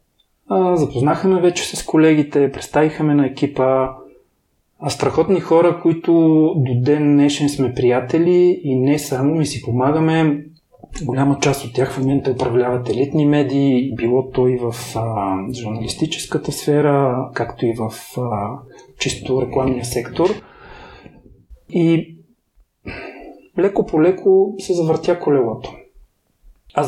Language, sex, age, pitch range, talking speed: Bulgarian, male, 30-49, 125-165 Hz, 110 wpm